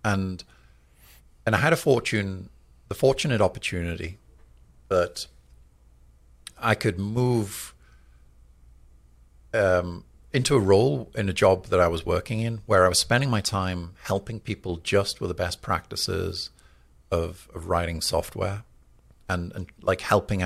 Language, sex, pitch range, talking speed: English, male, 65-100 Hz, 135 wpm